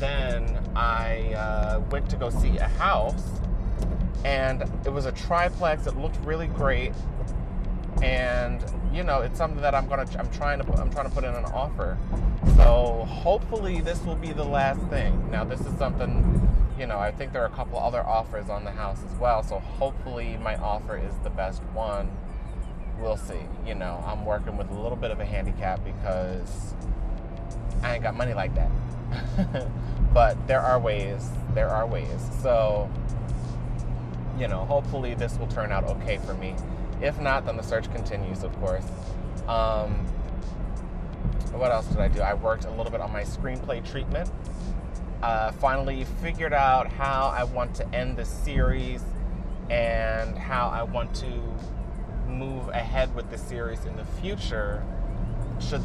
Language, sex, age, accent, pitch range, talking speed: English, male, 30-49, American, 95-130 Hz, 170 wpm